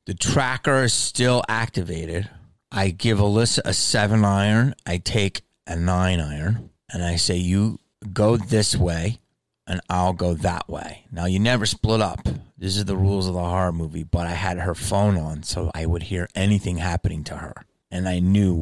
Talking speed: 185 wpm